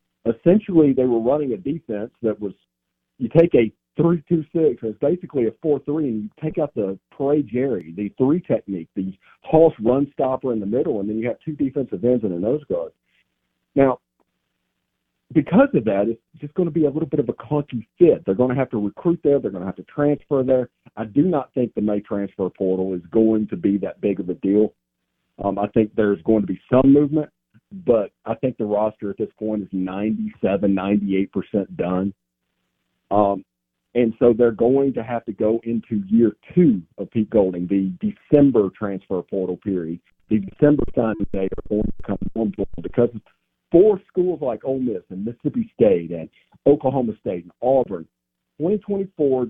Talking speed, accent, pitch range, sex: 190 wpm, American, 95-140 Hz, male